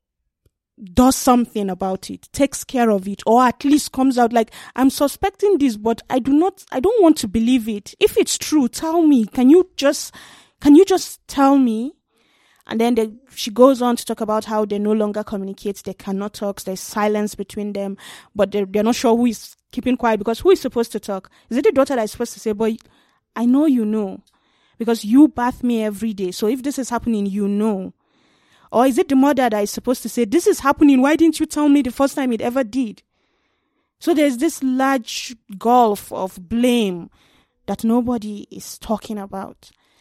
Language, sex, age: English, female, 20-39